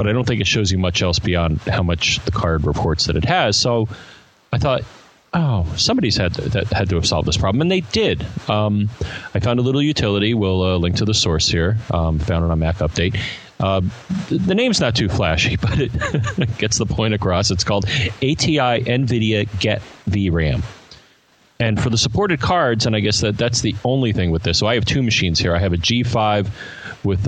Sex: male